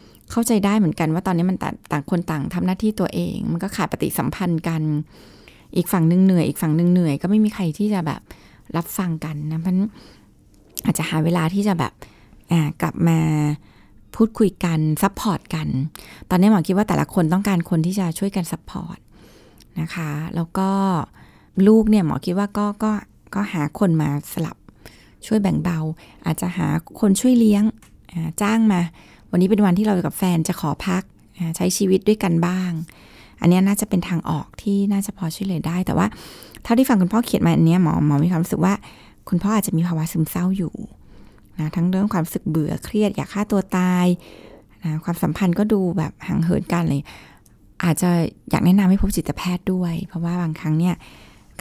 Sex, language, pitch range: female, Thai, 160-195 Hz